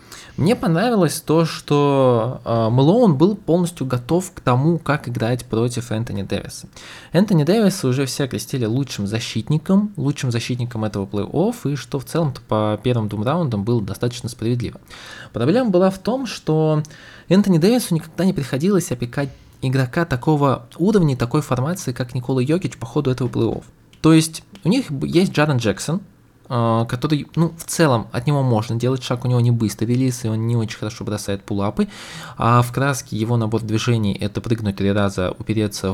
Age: 20-39